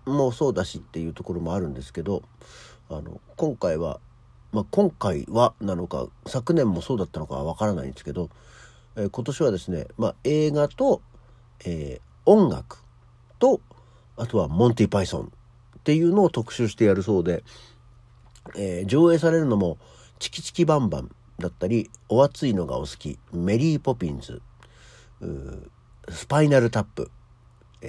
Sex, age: male, 50-69